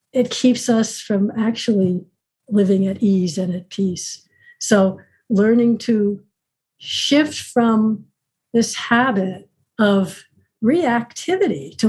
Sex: female